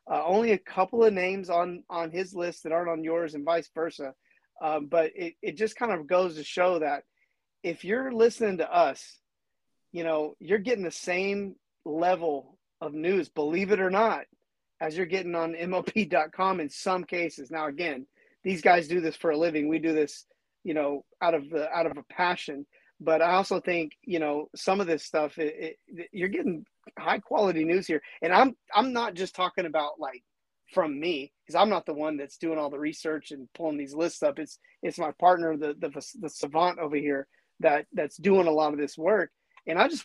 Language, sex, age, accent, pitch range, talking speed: English, male, 30-49, American, 155-195 Hz, 210 wpm